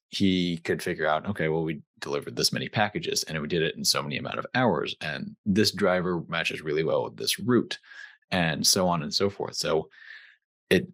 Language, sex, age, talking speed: English, male, 30-49, 210 wpm